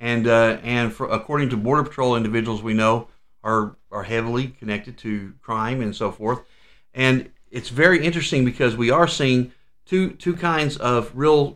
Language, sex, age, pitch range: English, male, 50-69, 110-140 Hz